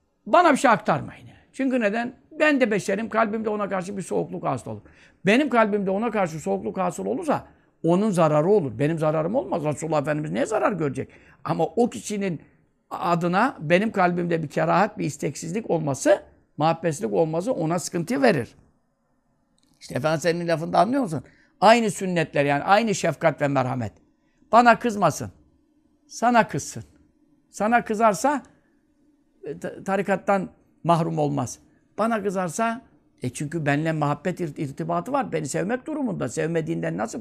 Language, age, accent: Turkish, 60-79, native